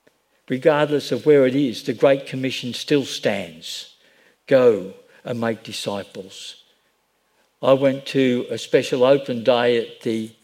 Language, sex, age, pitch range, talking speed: English, male, 60-79, 115-140 Hz, 130 wpm